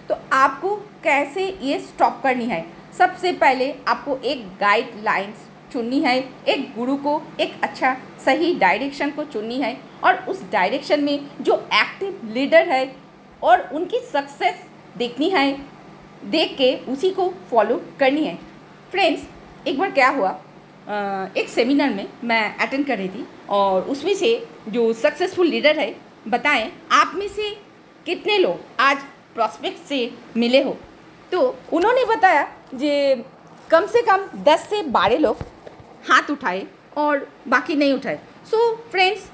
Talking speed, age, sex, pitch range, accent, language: 145 wpm, 50-69, female, 250-365 Hz, native, Hindi